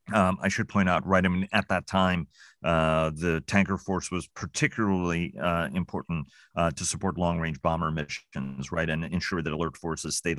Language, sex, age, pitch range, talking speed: English, male, 40-59, 85-100 Hz, 190 wpm